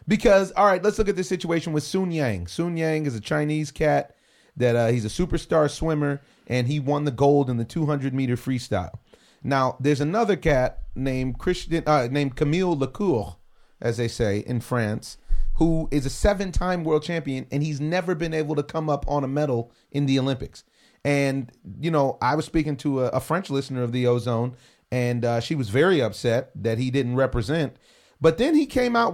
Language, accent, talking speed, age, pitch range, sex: English, American, 200 wpm, 30-49, 125-165 Hz, male